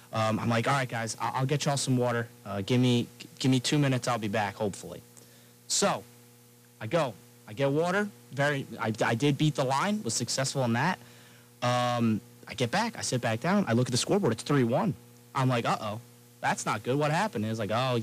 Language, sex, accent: English, male, American